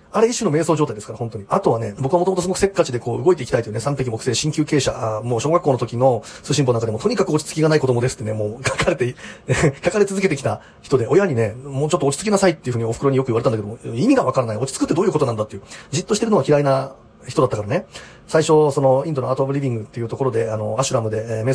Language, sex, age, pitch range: Japanese, male, 30-49, 120-175 Hz